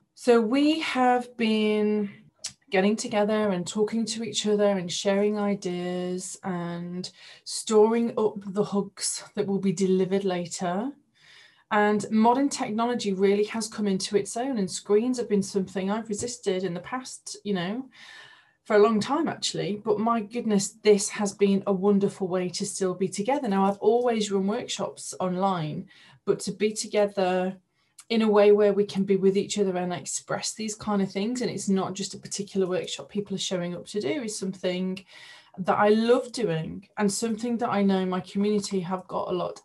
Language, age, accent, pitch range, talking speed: English, 30-49, British, 185-215 Hz, 180 wpm